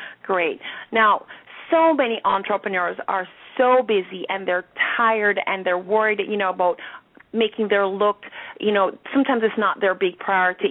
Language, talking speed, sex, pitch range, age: English, 155 wpm, female, 190-255 Hz, 40-59